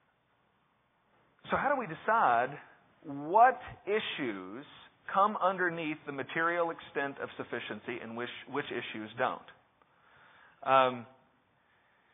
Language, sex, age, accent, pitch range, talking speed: English, male, 40-59, American, 130-165 Hz, 100 wpm